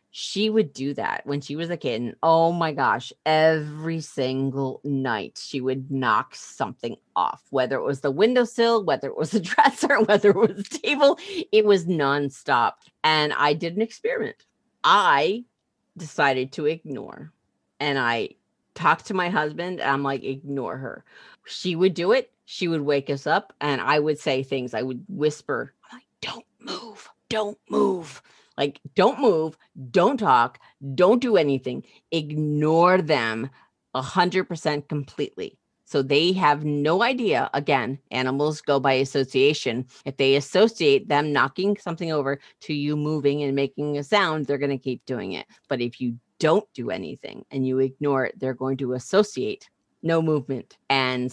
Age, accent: 40-59, American